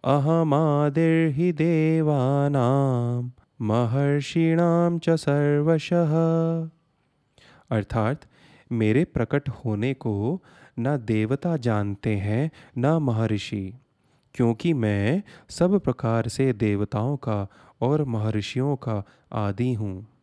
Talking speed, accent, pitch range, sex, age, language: 75 wpm, native, 115-160 Hz, male, 30-49, Hindi